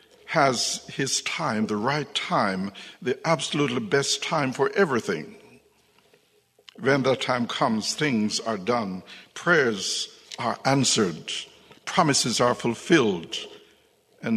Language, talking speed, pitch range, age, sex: English, 110 wpm, 125-170 Hz, 60-79, male